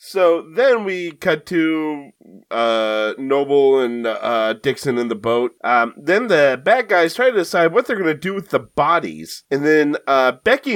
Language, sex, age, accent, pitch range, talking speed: English, male, 30-49, American, 115-165 Hz, 185 wpm